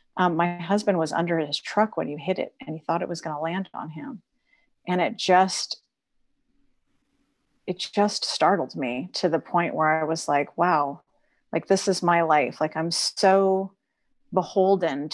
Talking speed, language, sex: 180 wpm, English, female